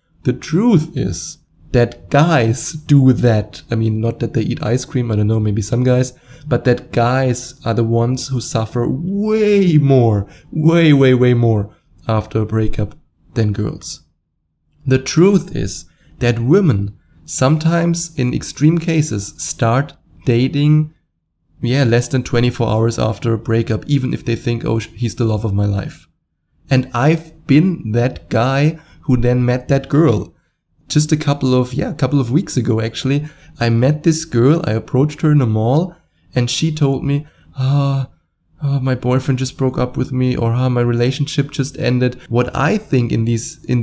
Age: 20-39